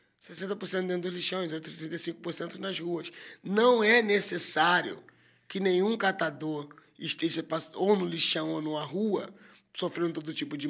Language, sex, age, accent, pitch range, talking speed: Portuguese, male, 20-39, Brazilian, 145-180 Hz, 145 wpm